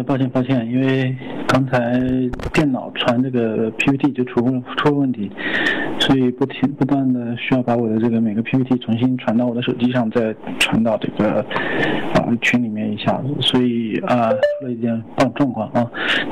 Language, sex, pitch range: Chinese, male, 115-135 Hz